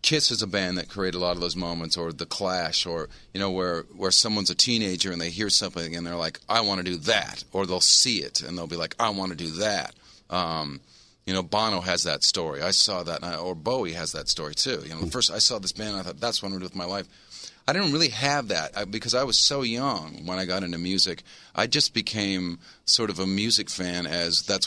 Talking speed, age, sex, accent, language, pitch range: 260 wpm, 40-59, male, American, English, 85-110 Hz